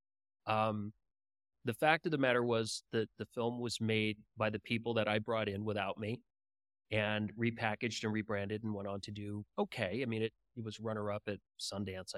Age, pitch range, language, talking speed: 30-49, 105-130 Hz, English, 195 wpm